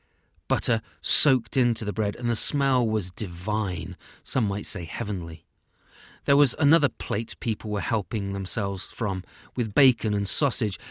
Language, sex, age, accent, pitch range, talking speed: English, male, 30-49, British, 100-130 Hz, 150 wpm